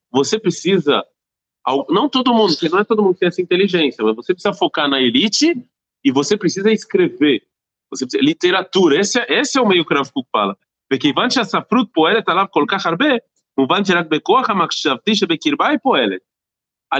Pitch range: 125-205 Hz